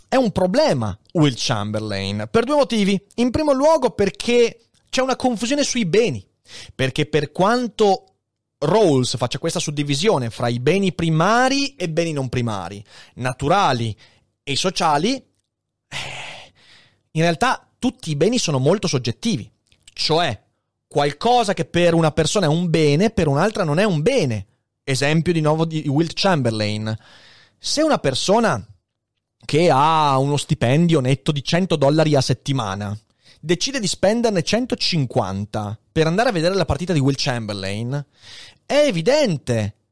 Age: 30-49